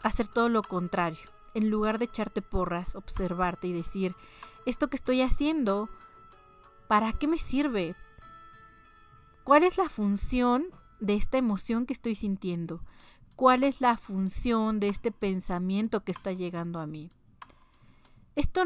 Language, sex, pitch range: Spanish, female, 185-250 Hz